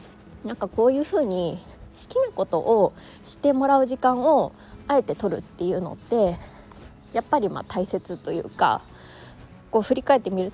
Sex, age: female, 20-39